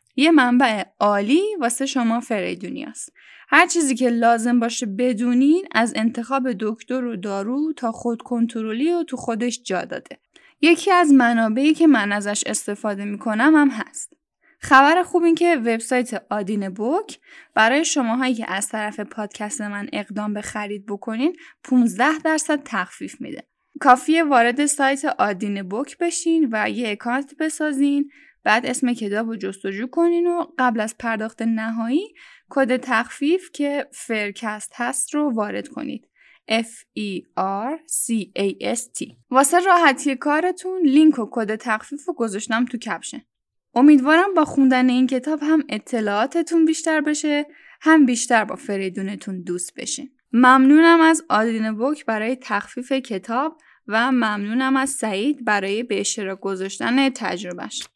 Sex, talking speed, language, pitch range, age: female, 140 wpm, Persian, 220-300 Hz, 10-29